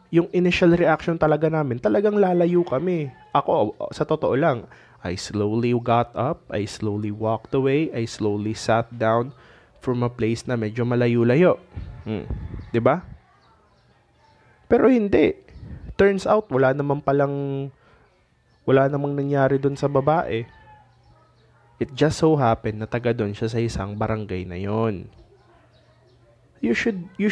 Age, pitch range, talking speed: 20-39, 110-150 Hz, 135 wpm